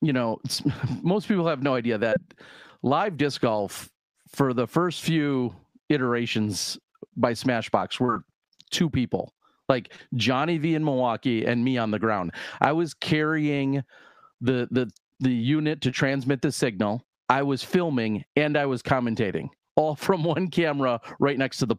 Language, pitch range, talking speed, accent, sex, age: English, 115-145 Hz, 160 wpm, American, male, 40-59